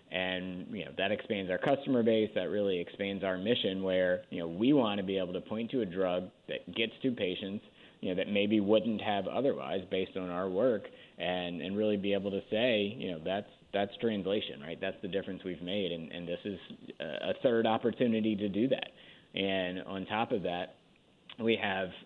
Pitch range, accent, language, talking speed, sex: 95-110 Hz, American, English, 205 wpm, male